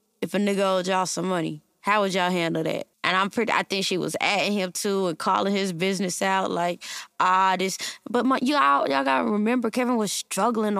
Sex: female